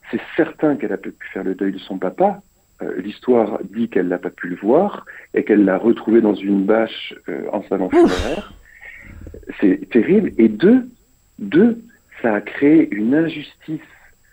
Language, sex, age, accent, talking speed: French, male, 50-69, French, 170 wpm